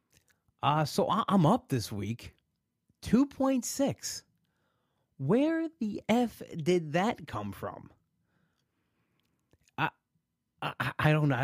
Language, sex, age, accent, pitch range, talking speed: English, male, 30-49, American, 120-165 Hz, 100 wpm